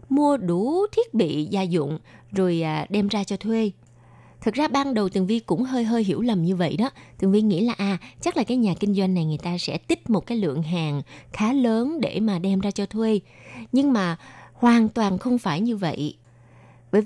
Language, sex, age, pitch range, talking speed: Vietnamese, female, 20-39, 180-245 Hz, 220 wpm